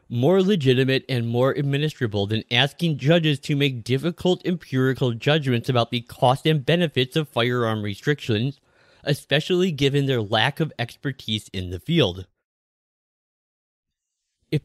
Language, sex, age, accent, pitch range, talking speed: English, male, 30-49, American, 120-150 Hz, 125 wpm